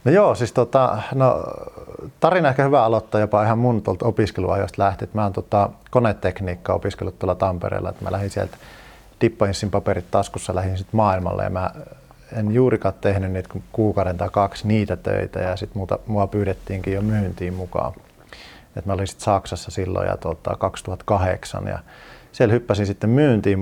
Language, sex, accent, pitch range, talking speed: Finnish, male, native, 95-105 Hz, 170 wpm